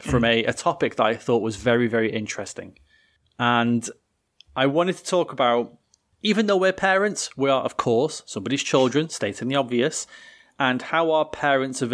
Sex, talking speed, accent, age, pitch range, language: male, 175 wpm, British, 20-39, 115-145 Hz, English